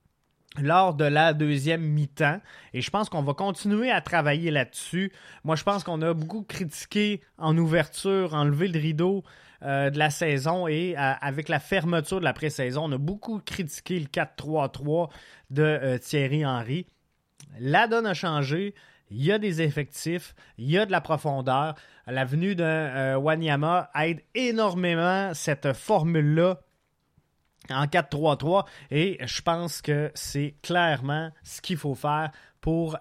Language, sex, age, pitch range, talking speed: French, male, 20-39, 145-180 Hz, 155 wpm